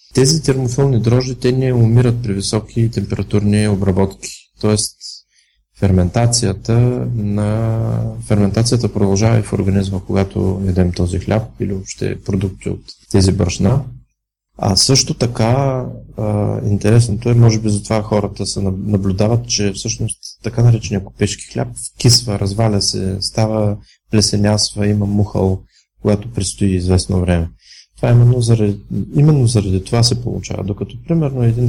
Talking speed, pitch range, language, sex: 125 wpm, 100-120 Hz, Bulgarian, male